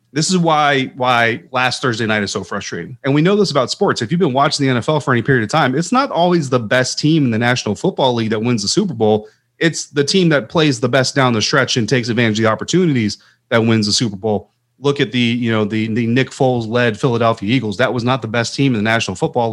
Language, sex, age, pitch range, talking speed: English, male, 30-49, 110-135 Hz, 260 wpm